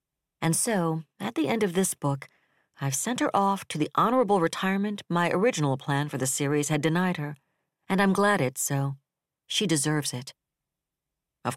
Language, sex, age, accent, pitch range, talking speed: English, female, 60-79, American, 140-180 Hz, 175 wpm